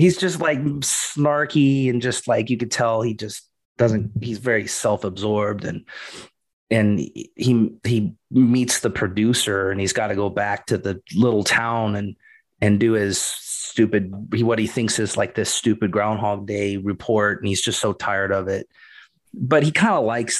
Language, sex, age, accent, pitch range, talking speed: English, male, 30-49, American, 105-125 Hz, 175 wpm